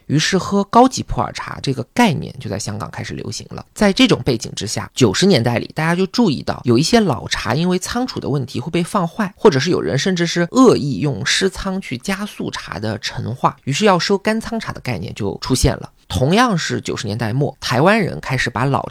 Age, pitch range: 20-39, 130-195 Hz